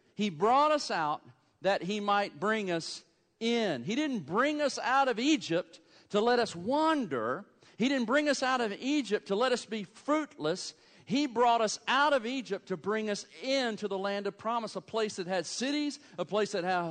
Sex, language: male, English